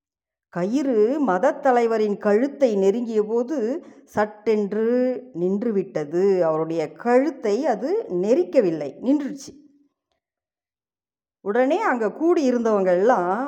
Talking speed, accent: 75 wpm, native